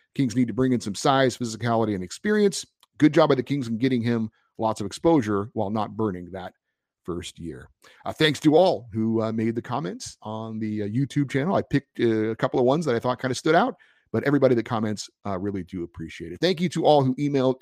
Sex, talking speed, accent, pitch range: male, 240 wpm, American, 110-150 Hz